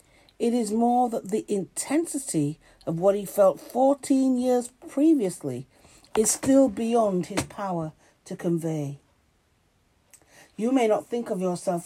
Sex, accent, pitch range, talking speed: female, British, 160-230 Hz, 130 wpm